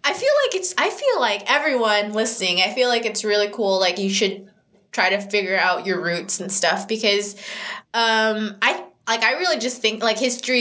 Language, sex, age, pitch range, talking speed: English, female, 20-39, 180-215 Hz, 205 wpm